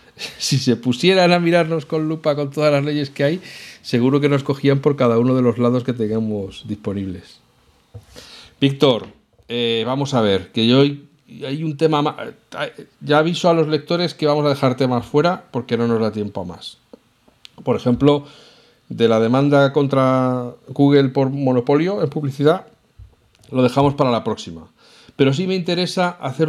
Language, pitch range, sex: Spanish, 125-145 Hz, male